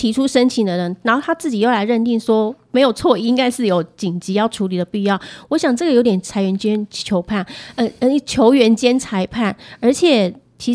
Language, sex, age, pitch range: Chinese, female, 30-49, 190-250 Hz